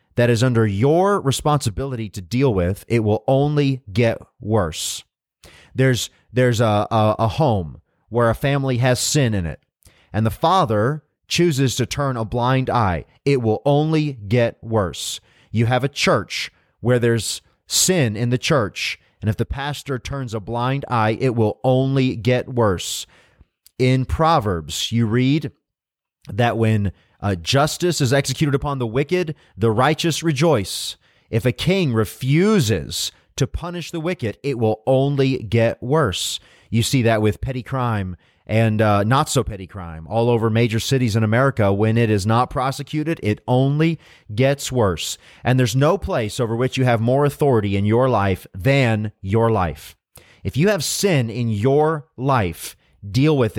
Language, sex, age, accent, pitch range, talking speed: English, male, 30-49, American, 110-135 Hz, 160 wpm